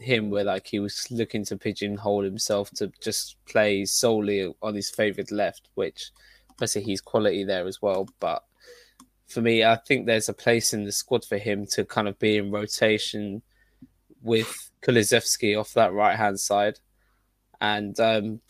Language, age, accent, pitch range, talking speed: English, 10-29, British, 100-115 Hz, 170 wpm